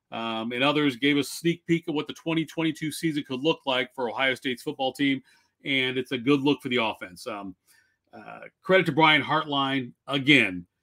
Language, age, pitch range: English, 40-59, 125-165 Hz